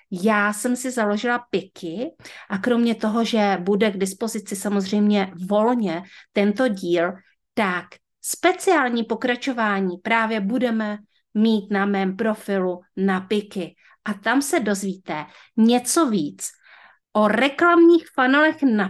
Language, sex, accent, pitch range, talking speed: Czech, female, native, 190-235 Hz, 120 wpm